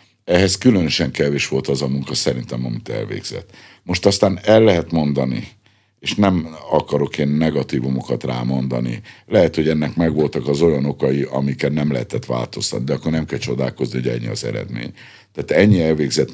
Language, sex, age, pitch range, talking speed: Hungarian, male, 60-79, 65-85 Hz, 160 wpm